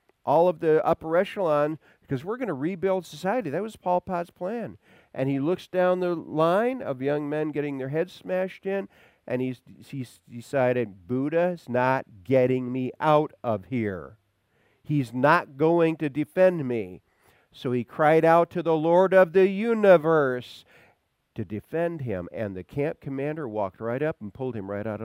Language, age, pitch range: English, 50-69, 105-160 Hz